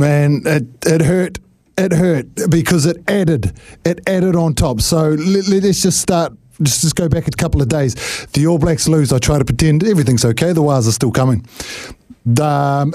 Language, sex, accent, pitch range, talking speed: English, male, Australian, 140-170 Hz, 195 wpm